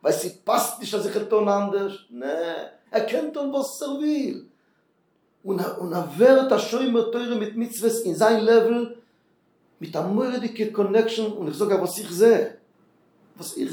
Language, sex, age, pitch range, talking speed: Hebrew, male, 50-69, 190-225 Hz, 110 wpm